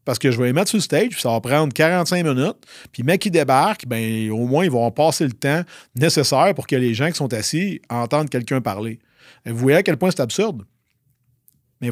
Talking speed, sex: 240 wpm, male